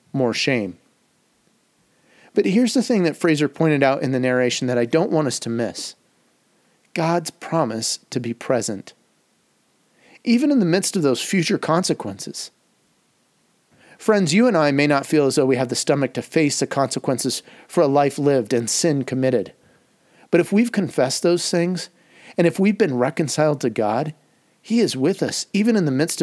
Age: 40-59